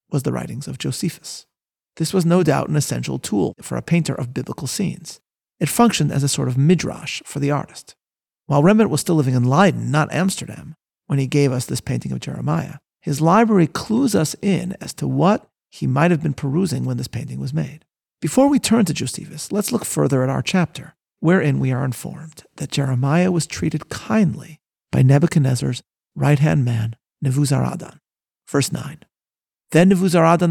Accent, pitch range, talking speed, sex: American, 130-160 Hz, 180 wpm, male